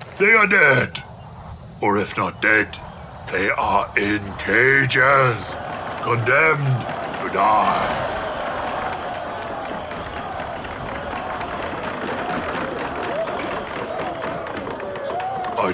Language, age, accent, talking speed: English, 60-79, American, 55 wpm